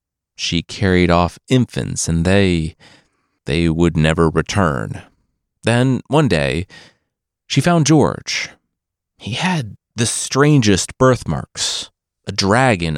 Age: 30-49